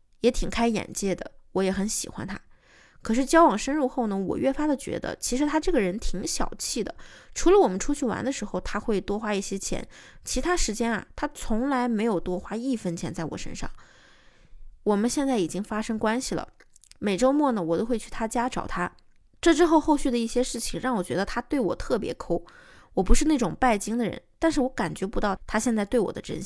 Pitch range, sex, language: 195-255 Hz, female, Chinese